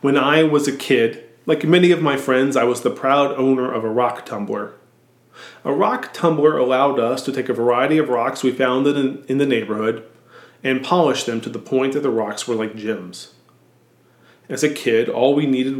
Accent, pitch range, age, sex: American, 125-155 Hz, 30-49, male